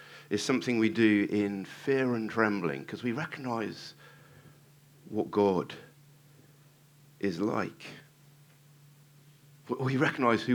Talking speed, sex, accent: 100 wpm, male, British